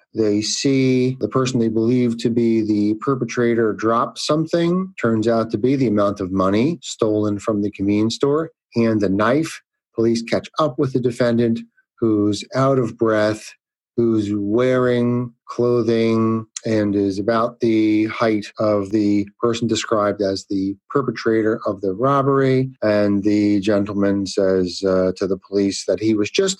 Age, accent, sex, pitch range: 40-59, American, male, 105-130 Hz